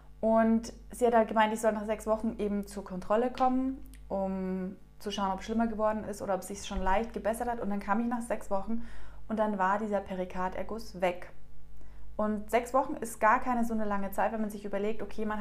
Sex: female